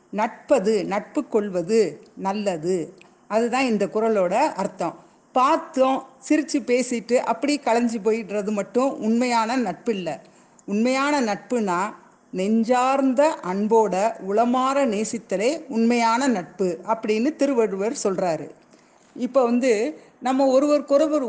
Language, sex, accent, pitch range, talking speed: Tamil, female, native, 205-270 Hz, 95 wpm